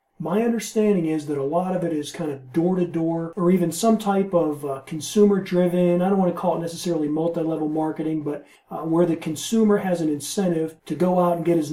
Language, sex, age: English, male, 40-59